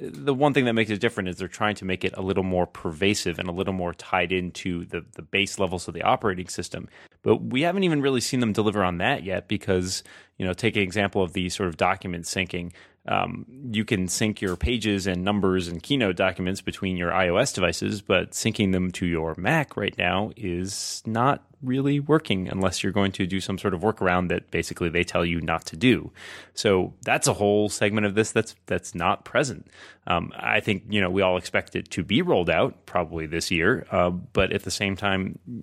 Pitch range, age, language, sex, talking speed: 90-105 Hz, 30-49, English, male, 220 wpm